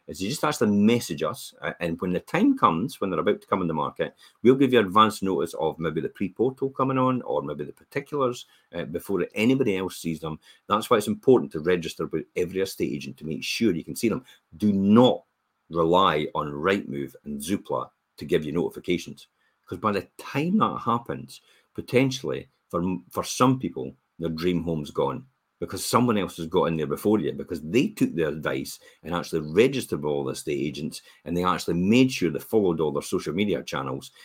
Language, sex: English, male